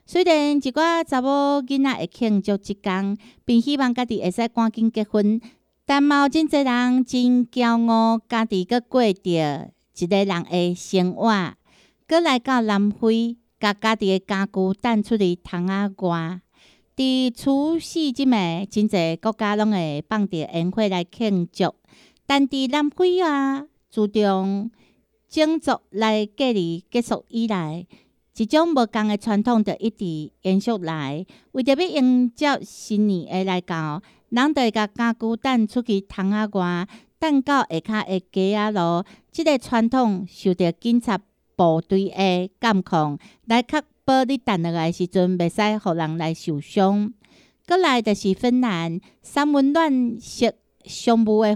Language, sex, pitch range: Chinese, female, 185-250 Hz